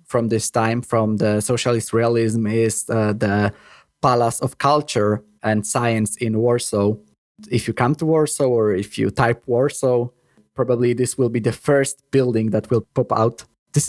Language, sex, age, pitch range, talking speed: Polish, male, 20-39, 115-135 Hz, 170 wpm